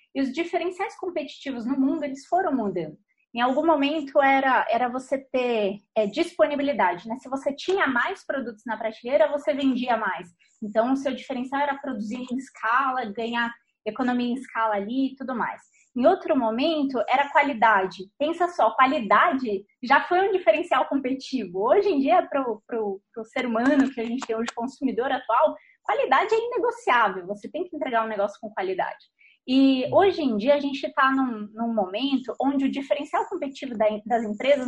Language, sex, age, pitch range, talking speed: Portuguese, female, 20-39, 230-310 Hz, 170 wpm